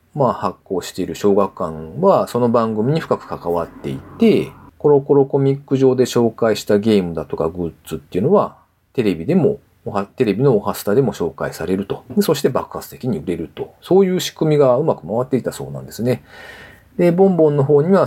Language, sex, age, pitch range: Japanese, male, 40-59, 100-155 Hz